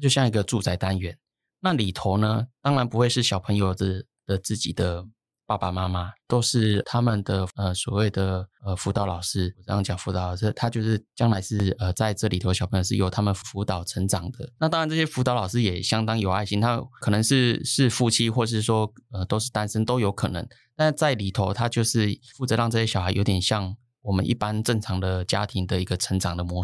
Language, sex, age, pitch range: Chinese, male, 20-39, 95-120 Hz